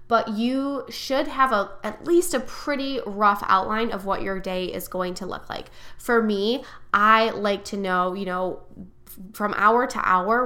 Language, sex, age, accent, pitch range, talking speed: English, female, 10-29, American, 190-230 Hz, 190 wpm